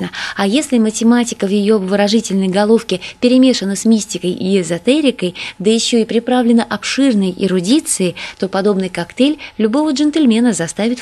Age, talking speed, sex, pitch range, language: 20-39, 130 wpm, female, 185-250 Hz, Russian